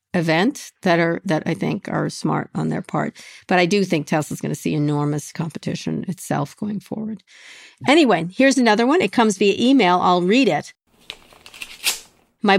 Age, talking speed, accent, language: 50-69, 170 wpm, American, English